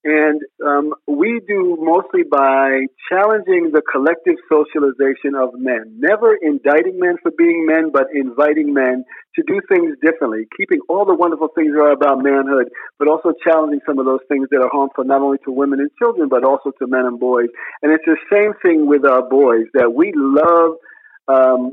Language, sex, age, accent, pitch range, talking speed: English, male, 50-69, American, 135-175 Hz, 190 wpm